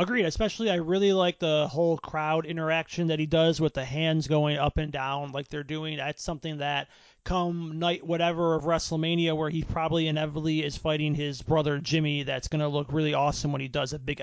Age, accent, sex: 30-49, American, male